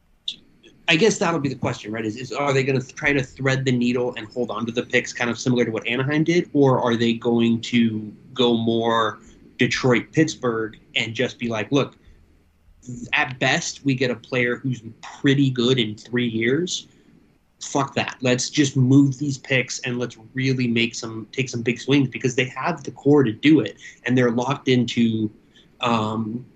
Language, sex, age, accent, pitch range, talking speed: English, male, 20-39, American, 115-135 Hz, 195 wpm